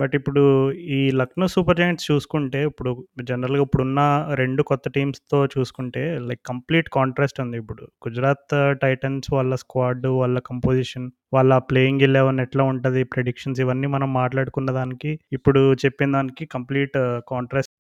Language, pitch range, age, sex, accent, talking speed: Telugu, 130-150 Hz, 20-39, male, native, 135 wpm